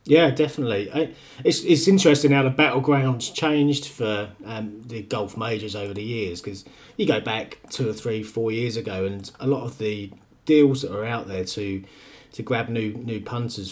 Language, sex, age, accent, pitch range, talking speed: English, male, 30-49, British, 100-130 Hz, 195 wpm